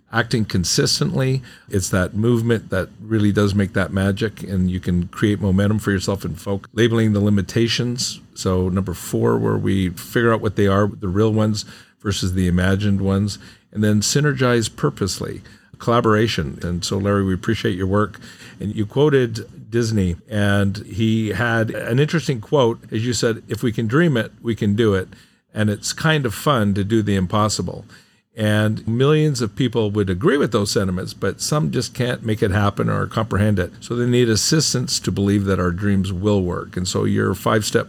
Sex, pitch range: male, 100-120 Hz